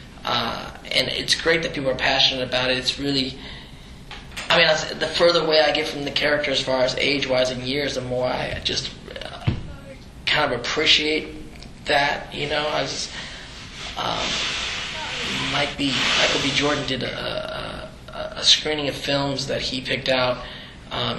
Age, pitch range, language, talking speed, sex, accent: 20-39, 125-145 Hz, English, 160 wpm, male, American